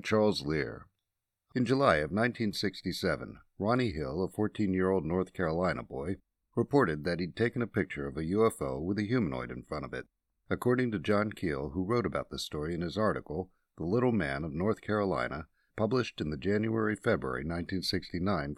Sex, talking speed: male, 170 wpm